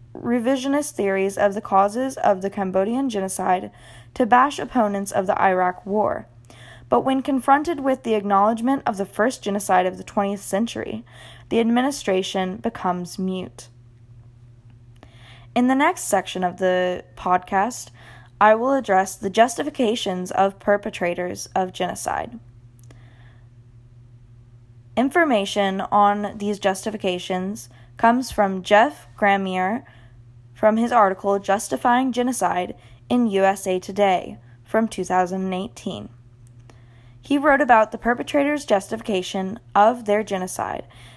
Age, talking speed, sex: 20-39, 110 wpm, female